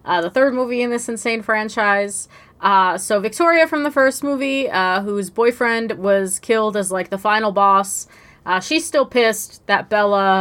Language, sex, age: English, female, 20-39